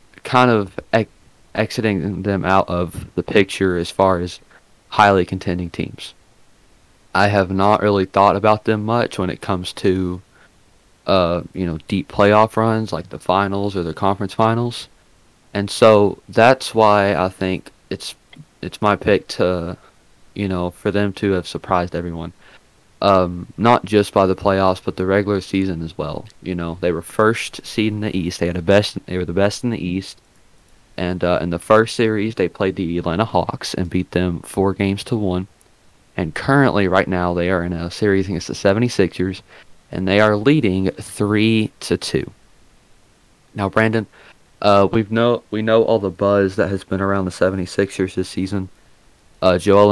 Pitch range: 90-105 Hz